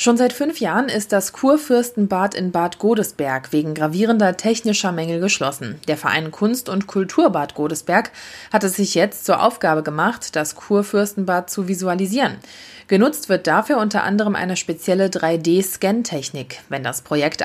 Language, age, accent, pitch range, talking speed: German, 30-49, German, 160-215 Hz, 150 wpm